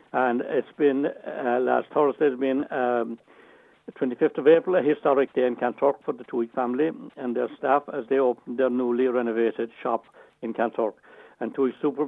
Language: English